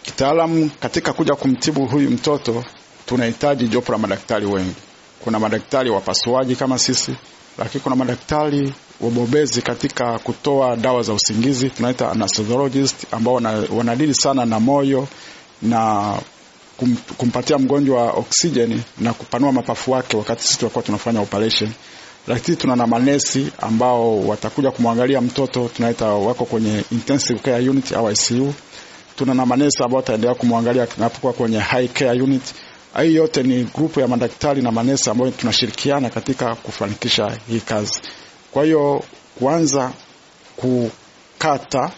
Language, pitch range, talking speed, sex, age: Swahili, 115-135 Hz, 125 wpm, male, 50-69